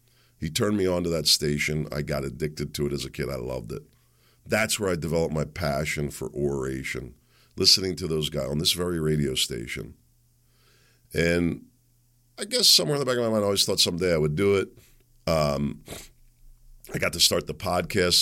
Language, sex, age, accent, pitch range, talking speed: English, male, 50-69, American, 85-135 Hz, 200 wpm